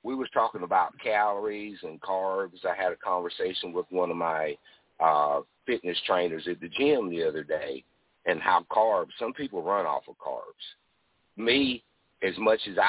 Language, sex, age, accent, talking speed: English, male, 50-69, American, 170 wpm